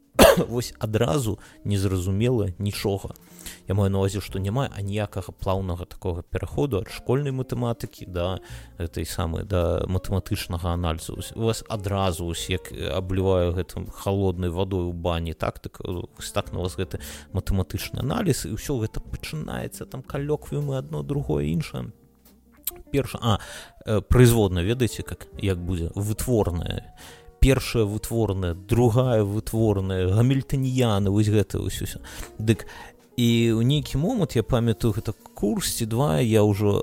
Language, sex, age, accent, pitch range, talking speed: Russian, male, 30-49, native, 95-115 Hz, 135 wpm